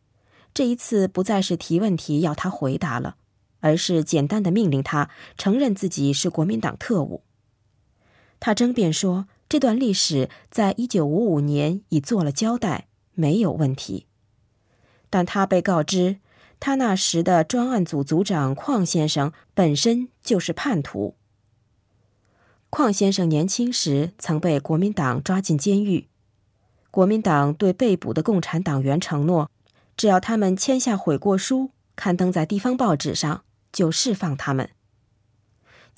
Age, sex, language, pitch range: 20-39, female, Chinese, 140-200 Hz